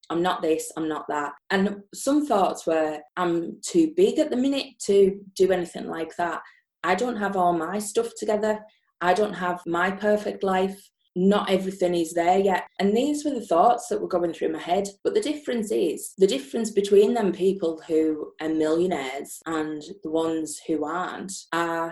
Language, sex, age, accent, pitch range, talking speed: English, female, 20-39, British, 170-220 Hz, 185 wpm